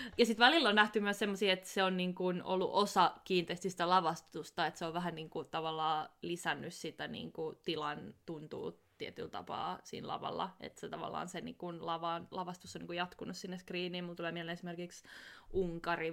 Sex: female